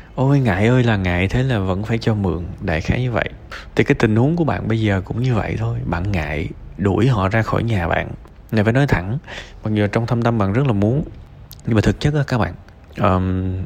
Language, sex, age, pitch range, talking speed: Vietnamese, male, 20-39, 90-110 Hz, 245 wpm